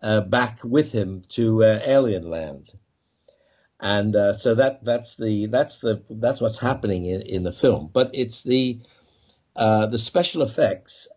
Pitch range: 105-125 Hz